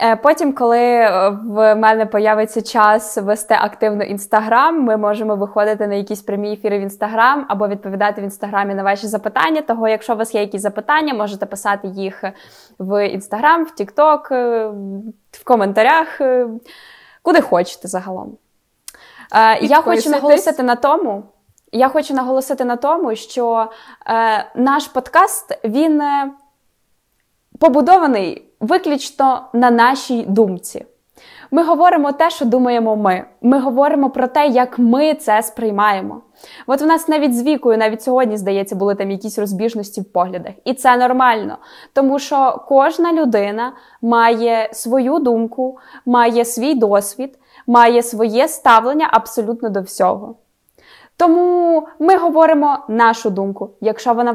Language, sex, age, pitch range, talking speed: Ukrainian, female, 20-39, 210-280 Hz, 125 wpm